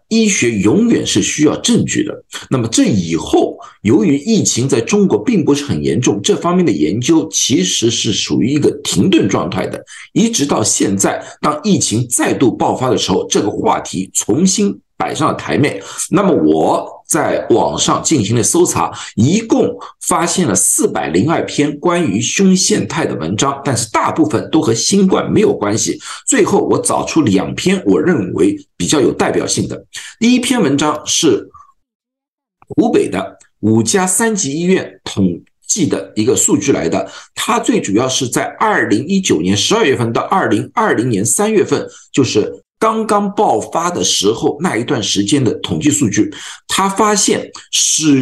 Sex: male